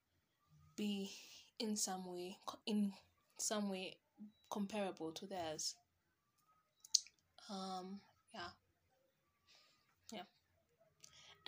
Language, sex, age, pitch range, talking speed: English, female, 10-29, 195-240 Hz, 65 wpm